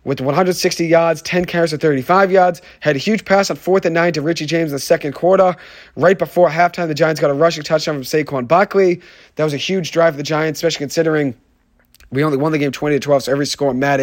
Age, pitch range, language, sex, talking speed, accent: 30-49, 150-180 Hz, English, male, 245 wpm, American